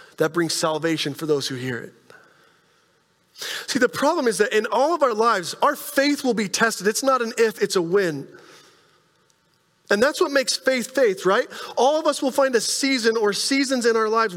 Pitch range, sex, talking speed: 175-275 Hz, male, 205 wpm